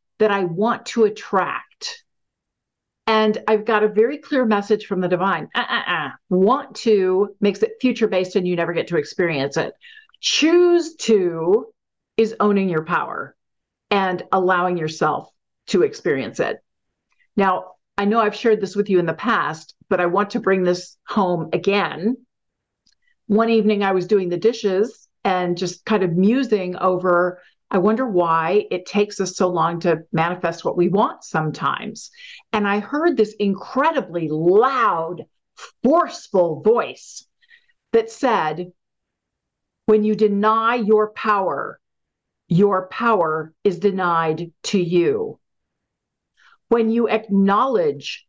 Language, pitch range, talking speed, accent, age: English, 180-225 Hz, 140 wpm, American, 50-69